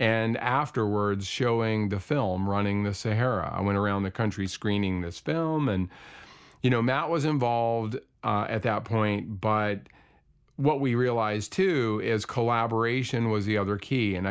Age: 40-59